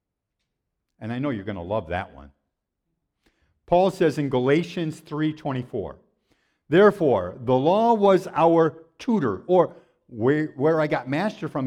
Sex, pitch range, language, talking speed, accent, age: male, 145-195 Hz, English, 140 wpm, American, 50-69